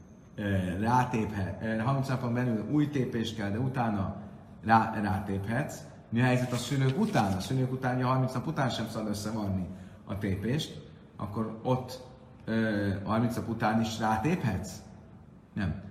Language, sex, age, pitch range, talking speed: Hungarian, male, 30-49, 100-125 Hz, 135 wpm